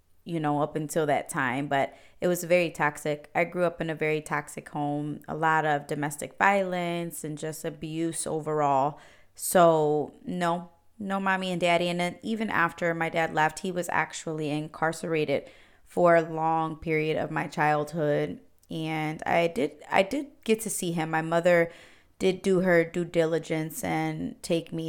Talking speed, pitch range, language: 170 wpm, 155-175 Hz, English